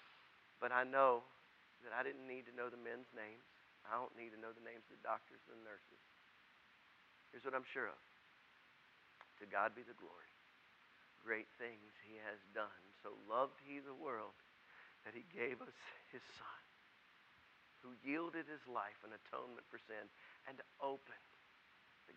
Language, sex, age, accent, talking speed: English, male, 50-69, American, 170 wpm